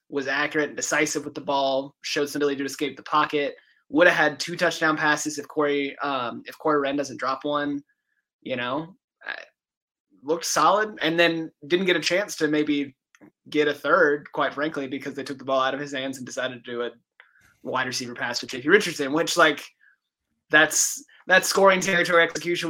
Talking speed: 195 wpm